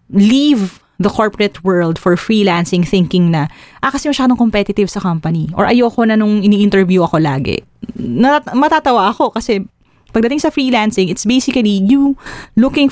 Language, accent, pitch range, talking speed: English, Filipino, 175-230 Hz, 145 wpm